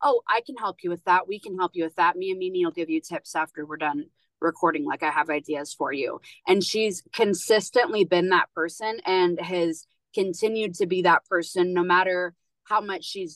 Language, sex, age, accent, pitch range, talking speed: English, female, 20-39, American, 165-200 Hz, 215 wpm